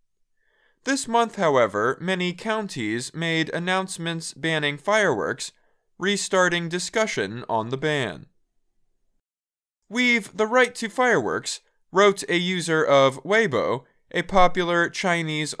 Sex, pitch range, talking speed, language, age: male, 155-205 Hz, 105 wpm, English, 20-39